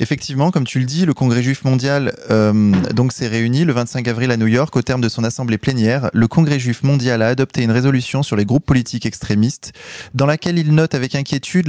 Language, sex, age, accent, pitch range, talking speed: French, male, 20-39, French, 115-145 Hz, 225 wpm